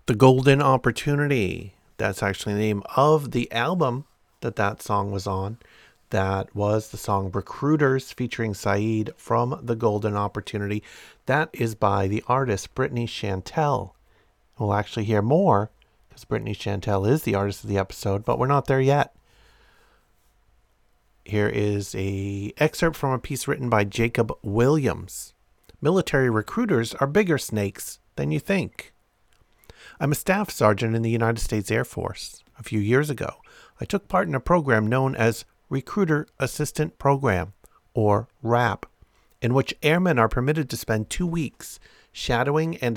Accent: American